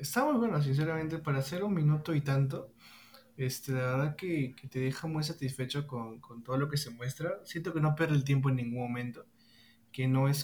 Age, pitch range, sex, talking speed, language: 20-39, 115-135 Hz, male, 215 wpm, Spanish